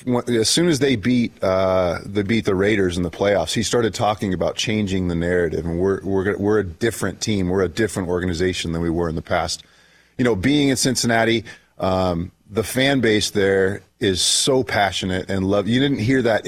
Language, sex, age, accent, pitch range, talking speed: English, male, 30-49, American, 95-115 Hz, 205 wpm